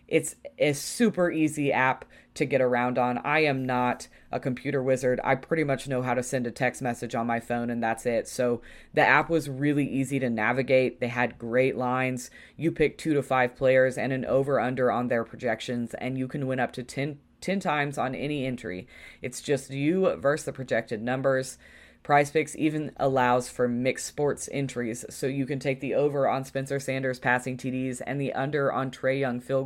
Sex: female